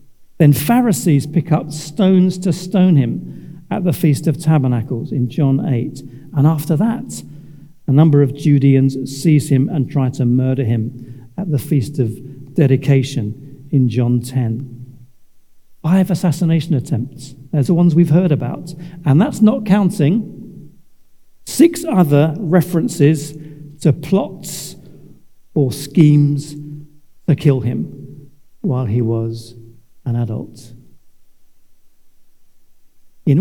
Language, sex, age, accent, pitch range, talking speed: English, male, 50-69, British, 130-175 Hz, 120 wpm